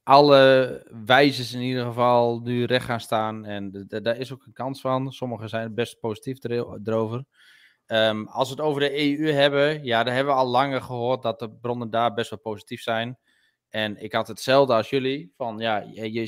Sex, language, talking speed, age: male, Dutch, 190 wpm, 20-39